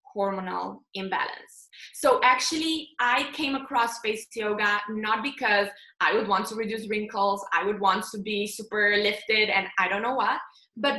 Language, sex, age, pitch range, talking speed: English, female, 20-39, 205-250 Hz, 165 wpm